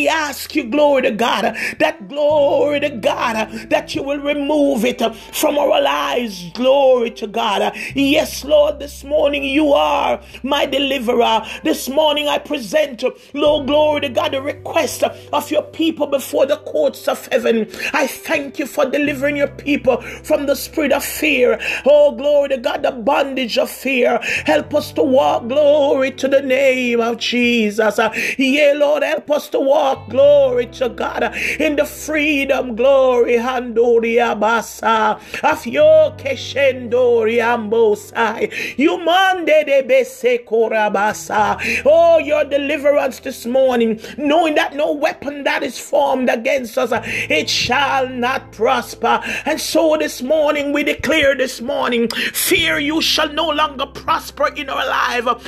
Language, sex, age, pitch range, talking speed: English, male, 40-59, 255-305 Hz, 135 wpm